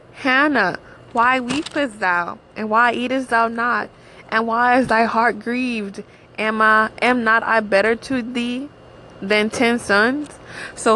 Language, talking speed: English, 150 wpm